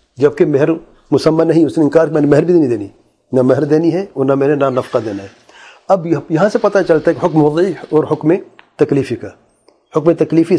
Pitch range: 145-185 Hz